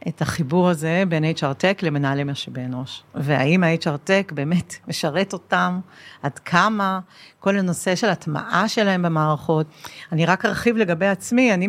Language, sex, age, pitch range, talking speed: Hebrew, female, 50-69, 155-195 Hz, 150 wpm